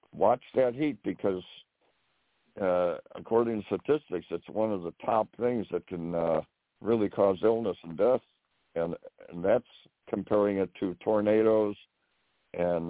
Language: English